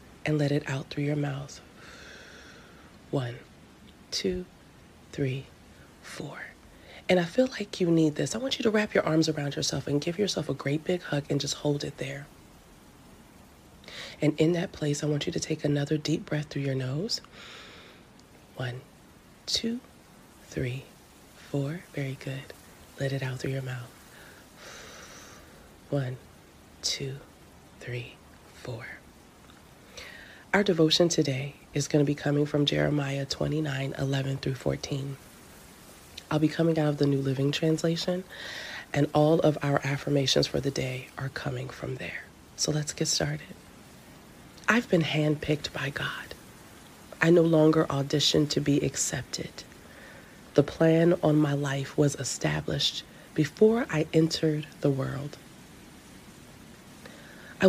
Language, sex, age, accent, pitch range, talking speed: English, female, 30-49, American, 140-165 Hz, 140 wpm